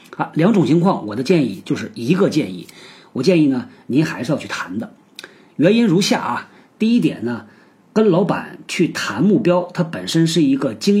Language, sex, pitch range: Chinese, male, 145-195 Hz